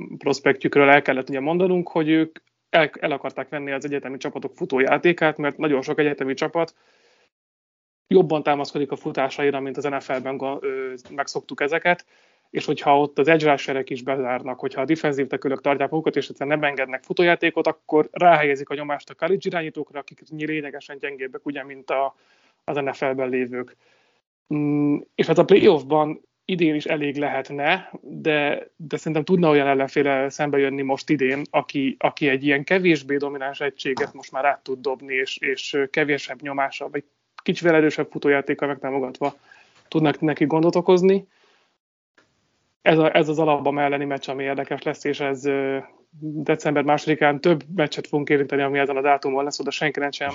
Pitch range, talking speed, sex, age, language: 135-155 Hz, 155 wpm, male, 30-49, Hungarian